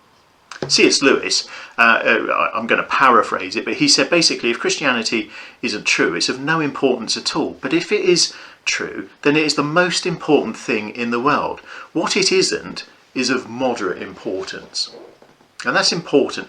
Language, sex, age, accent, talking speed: English, male, 40-59, British, 170 wpm